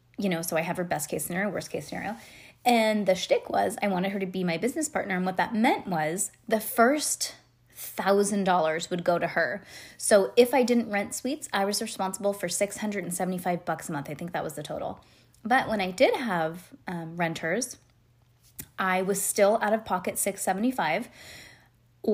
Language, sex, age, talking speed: English, female, 20-39, 190 wpm